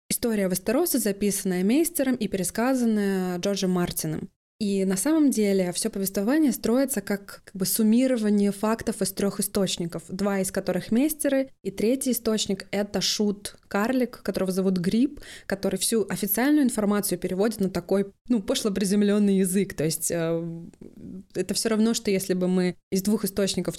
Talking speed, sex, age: 150 wpm, female, 20-39